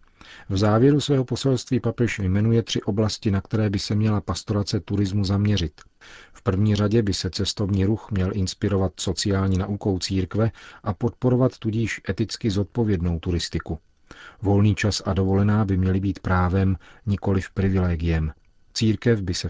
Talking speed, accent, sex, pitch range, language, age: 150 wpm, native, male, 95-105 Hz, Czech, 40-59